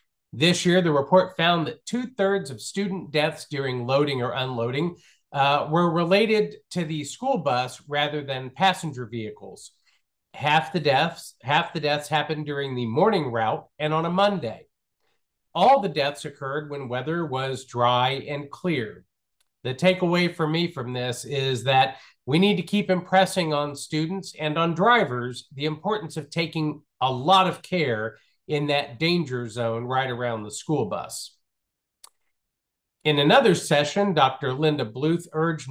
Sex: male